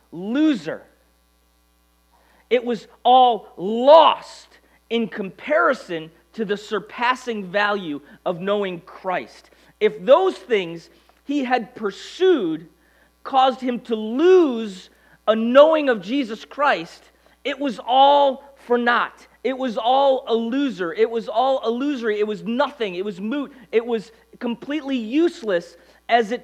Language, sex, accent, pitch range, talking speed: English, male, American, 175-260 Hz, 125 wpm